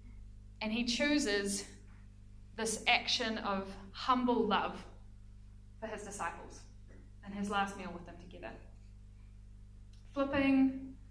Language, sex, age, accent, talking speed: English, female, 20-39, Australian, 105 wpm